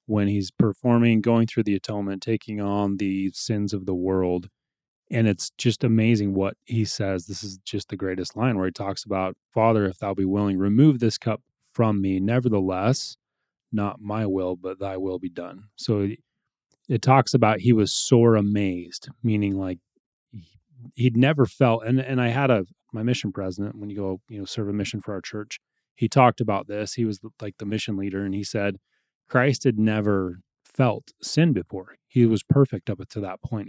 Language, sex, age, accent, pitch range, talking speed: English, male, 30-49, American, 100-115 Hz, 190 wpm